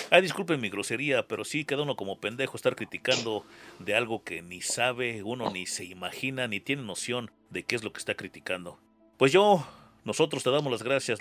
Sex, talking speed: male, 205 wpm